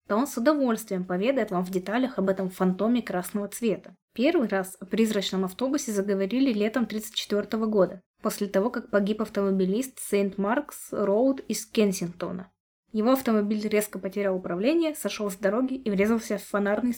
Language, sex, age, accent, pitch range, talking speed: Russian, female, 20-39, native, 200-245 Hz, 150 wpm